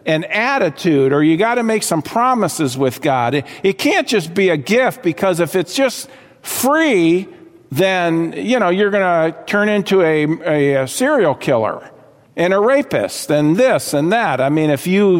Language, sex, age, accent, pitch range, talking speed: English, male, 50-69, American, 150-215 Hz, 180 wpm